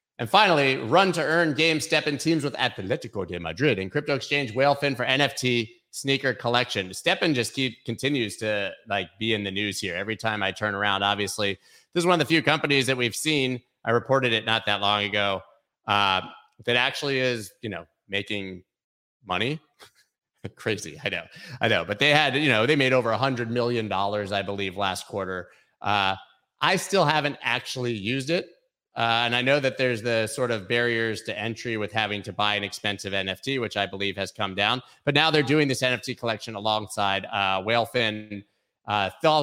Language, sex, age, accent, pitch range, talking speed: English, male, 30-49, American, 105-140 Hz, 200 wpm